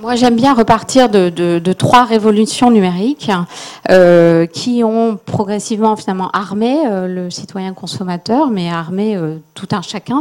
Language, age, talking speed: French, 40-59, 145 wpm